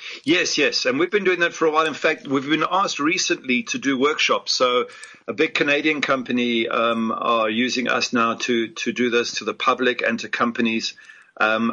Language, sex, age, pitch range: English, male, 40-59, 115-135 Hz